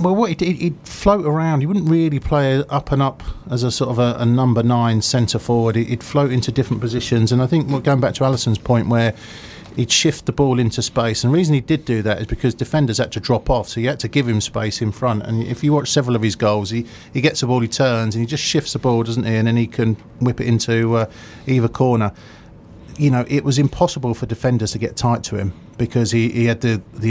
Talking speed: 260 wpm